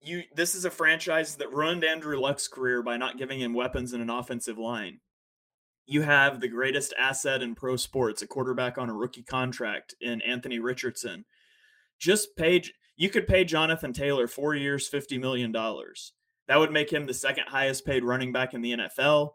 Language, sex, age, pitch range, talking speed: English, male, 30-49, 125-155 Hz, 190 wpm